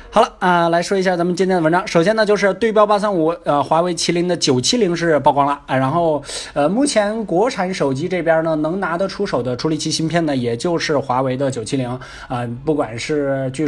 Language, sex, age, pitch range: Chinese, male, 20-39, 140-205 Hz